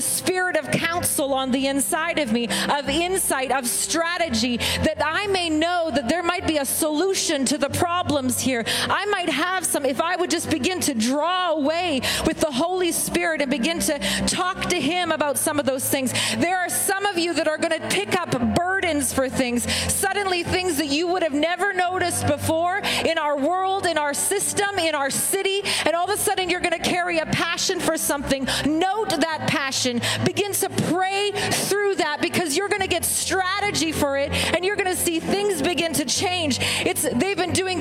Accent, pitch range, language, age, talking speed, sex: American, 305-370 Hz, English, 40-59, 200 wpm, female